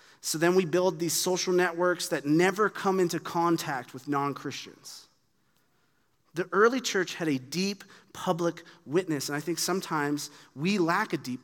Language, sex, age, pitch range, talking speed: English, male, 30-49, 125-165 Hz, 155 wpm